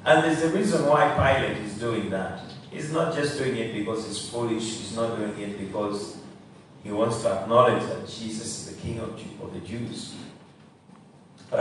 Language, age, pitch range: English, 40-59, 110-135 Hz